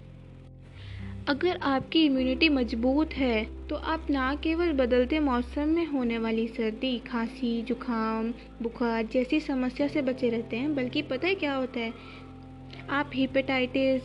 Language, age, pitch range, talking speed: Hindi, 20-39, 230-285 Hz, 135 wpm